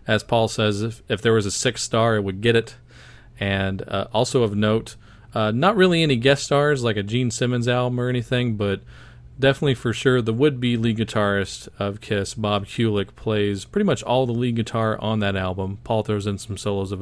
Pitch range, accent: 110-140 Hz, American